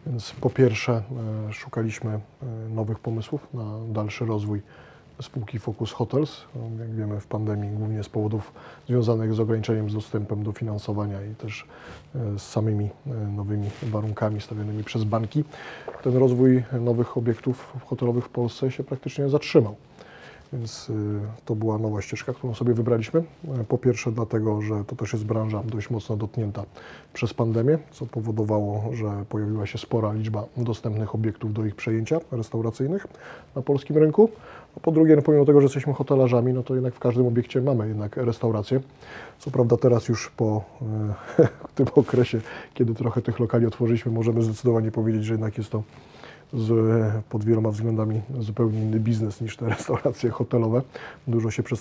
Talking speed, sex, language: 155 wpm, male, Polish